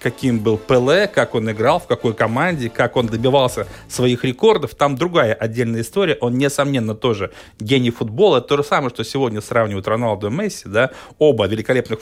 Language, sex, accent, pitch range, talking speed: Russian, male, native, 110-130 Hz, 180 wpm